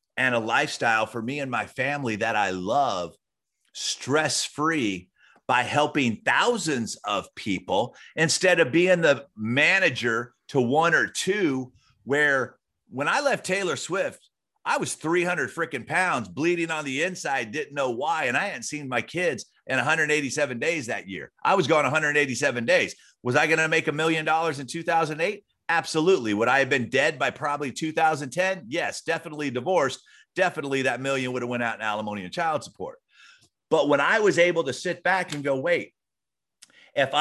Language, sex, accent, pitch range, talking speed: English, male, American, 125-160 Hz, 170 wpm